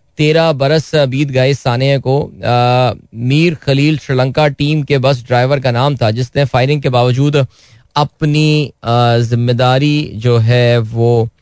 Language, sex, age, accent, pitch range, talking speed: Hindi, male, 20-39, native, 110-145 Hz, 130 wpm